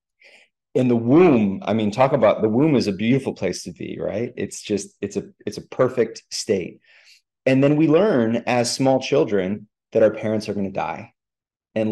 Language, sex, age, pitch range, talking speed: English, male, 30-49, 105-120 Hz, 190 wpm